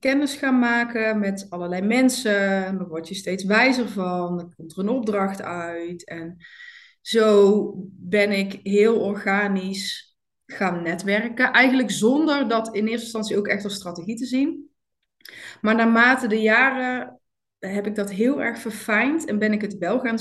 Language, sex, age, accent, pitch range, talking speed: Dutch, female, 20-39, Dutch, 195-250 Hz, 160 wpm